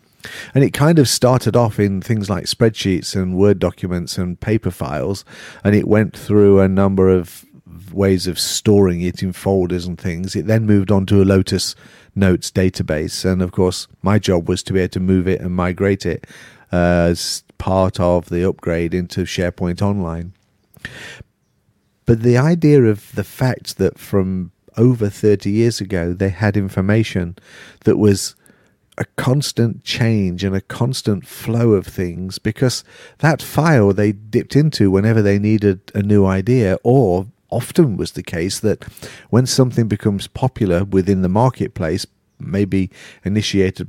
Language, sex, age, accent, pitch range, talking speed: English, male, 40-59, British, 95-110 Hz, 160 wpm